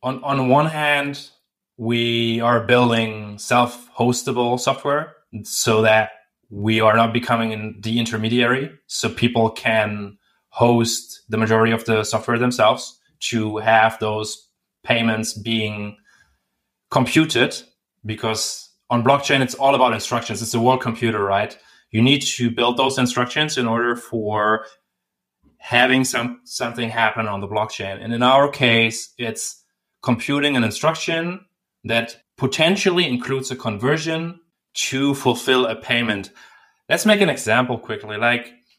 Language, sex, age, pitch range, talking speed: English, male, 20-39, 110-135 Hz, 130 wpm